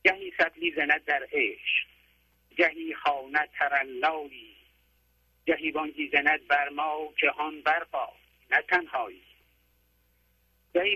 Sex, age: male, 50-69